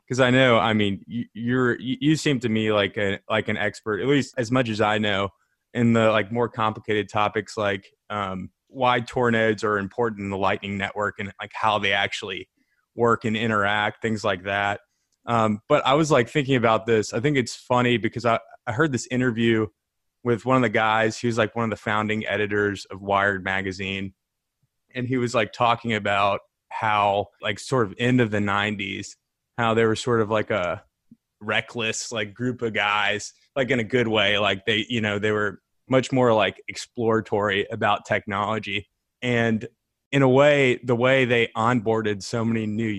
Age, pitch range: 20-39, 105-120 Hz